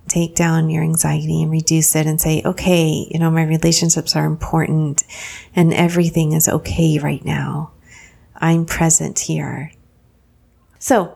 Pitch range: 160-185 Hz